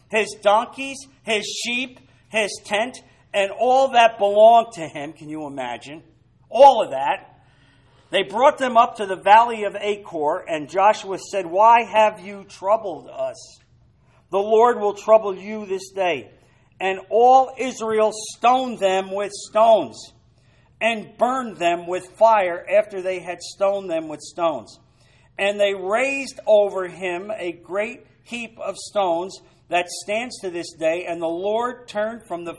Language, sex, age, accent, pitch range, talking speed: English, male, 50-69, American, 165-225 Hz, 150 wpm